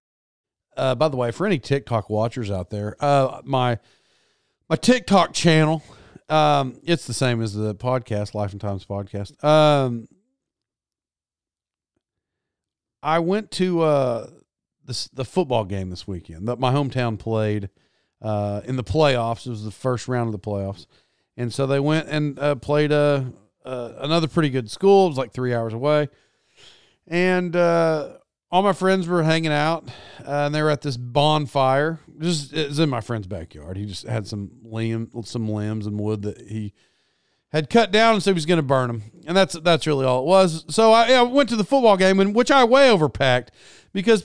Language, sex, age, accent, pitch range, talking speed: English, male, 40-59, American, 115-170 Hz, 185 wpm